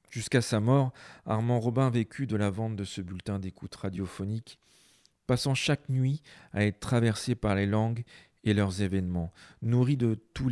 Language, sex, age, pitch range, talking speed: French, male, 40-59, 100-125 Hz, 165 wpm